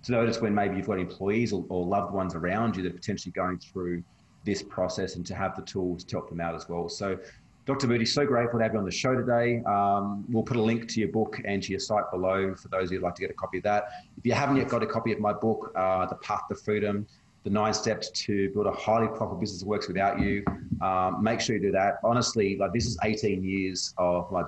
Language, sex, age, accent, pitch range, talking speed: English, male, 30-49, Australian, 90-110 Hz, 270 wpm